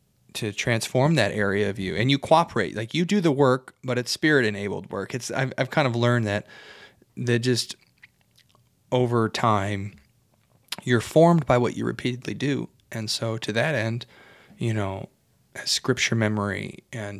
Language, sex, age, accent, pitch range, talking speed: English, male, 30-49, American, 105-130 Hz, 160 wpm